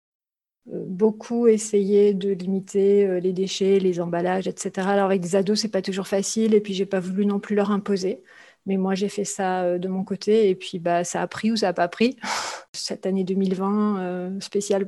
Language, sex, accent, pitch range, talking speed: French, female, French, 195-225 Hz, 200 wpm